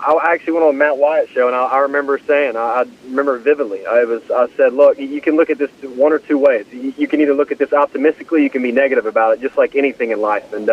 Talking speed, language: 265 wpm, English